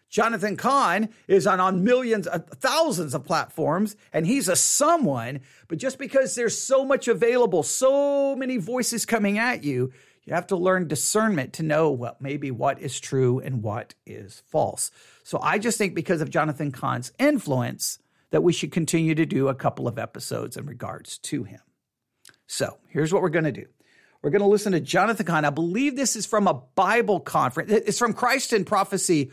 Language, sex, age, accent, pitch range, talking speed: English, male, 50-69, American, 155-230 Hz, 190 wpm